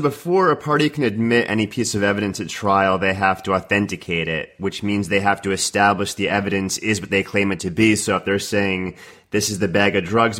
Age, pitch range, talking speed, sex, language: 30-49, 100-115 Hz, 240 wpm, male, English